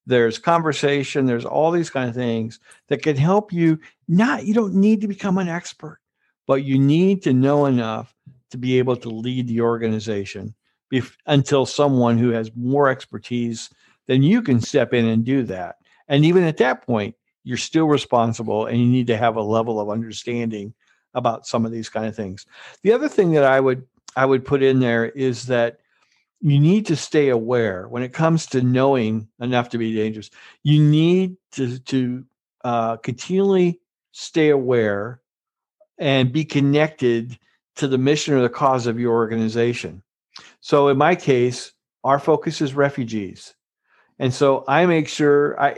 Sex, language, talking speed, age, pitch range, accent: male, English, 175 wpm, 50-69, 115-150 Hz, American